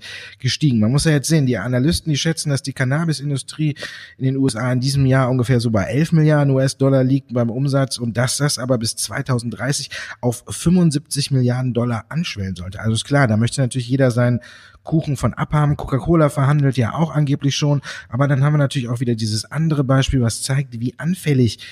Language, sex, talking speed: German, male, 195 wpm